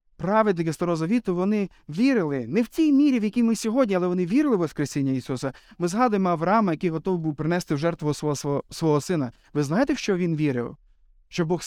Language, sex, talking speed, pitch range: Ukrainian, male, 200 wpm, 160-220 Hz